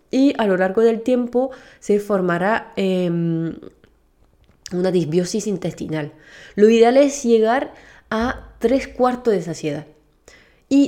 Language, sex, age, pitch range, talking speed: Spanish, female, 20-39, 165-230 Hz, 120 wpm